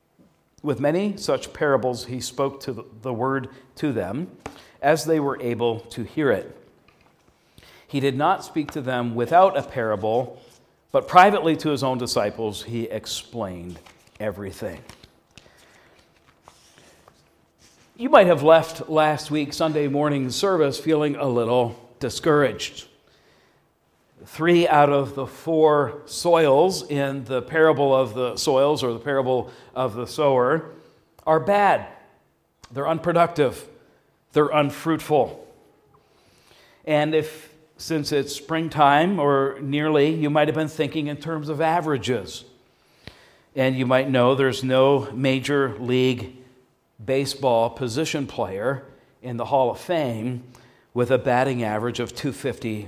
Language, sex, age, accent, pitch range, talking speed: English, male, 50-69, American, 125-150 Hz, 125 wpm